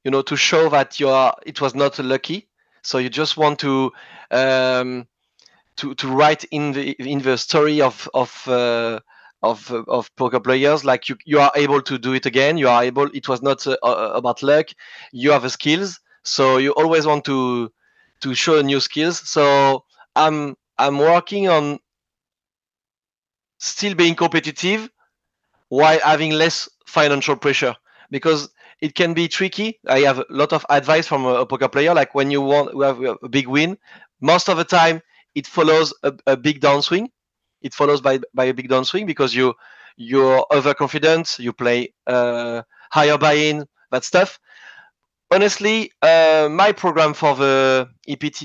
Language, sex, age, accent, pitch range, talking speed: English, male, 40-59, French, 130-155 Hz, 170 wpm